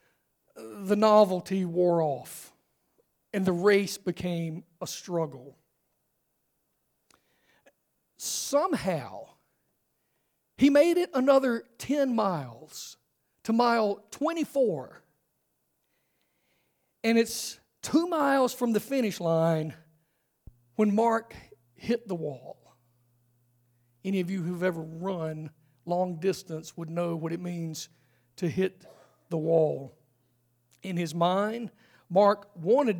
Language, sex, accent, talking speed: English, male, American, 100 wpm